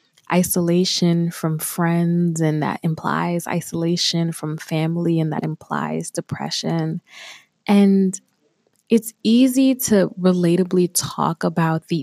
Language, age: English, 20-39